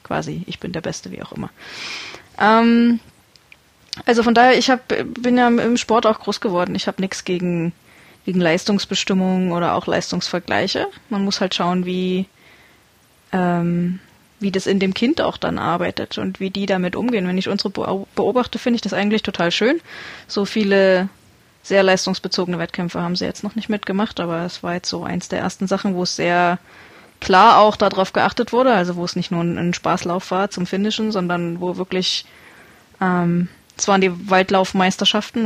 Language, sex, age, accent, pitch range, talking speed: German, female, 20-39, German, 185-220 Hz, 175 wpm